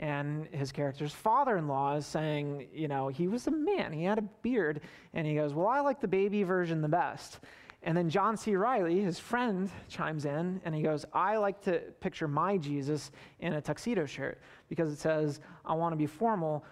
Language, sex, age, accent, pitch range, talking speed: English, male, 30-49, American, 150-185 Hz, 210 wpm